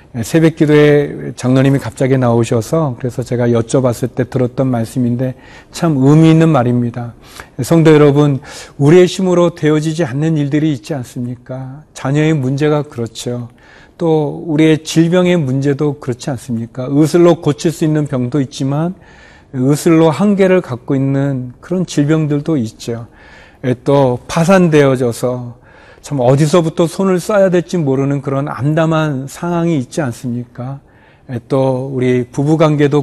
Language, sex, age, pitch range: Korean, male, 40-59, 125-160 Hz